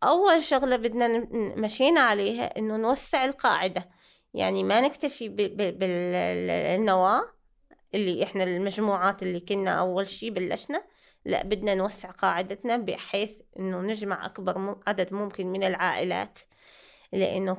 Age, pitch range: 20-39, 190-235 Hz